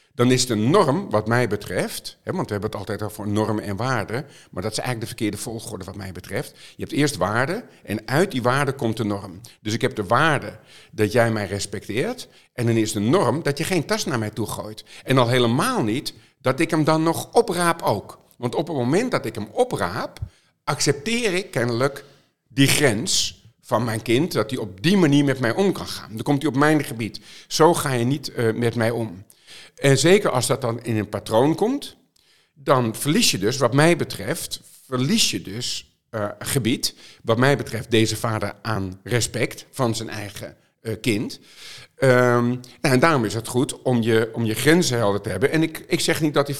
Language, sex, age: Dutch, male, 50-69